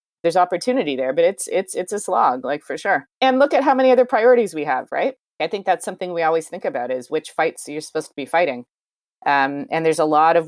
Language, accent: English, American